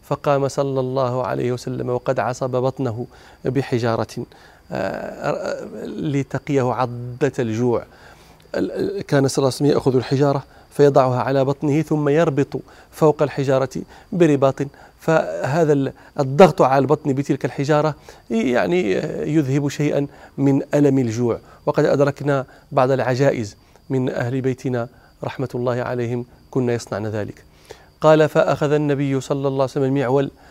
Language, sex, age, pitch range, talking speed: Arabic, male, 40-59, 130-155 Hz, 115 wpm